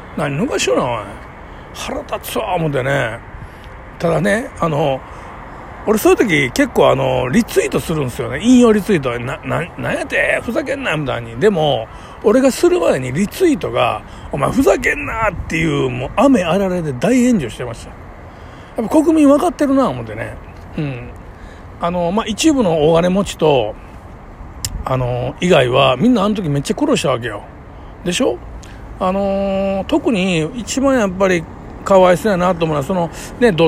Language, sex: Japanese, male